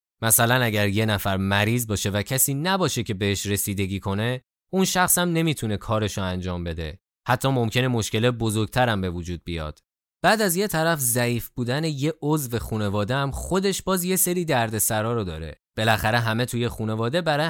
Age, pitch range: 20-39, 100-140 Hz